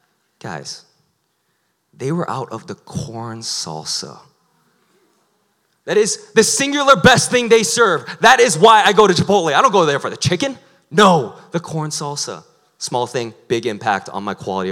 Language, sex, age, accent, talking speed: English, male, 30-49, American, 165 wpm